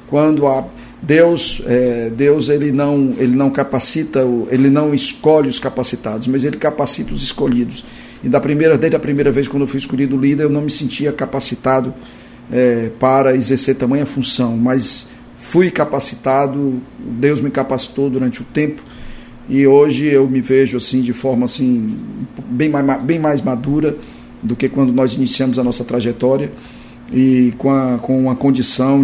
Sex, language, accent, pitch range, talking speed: male, Portuguese, Brazilian, 125-140 Hz, 165 wpm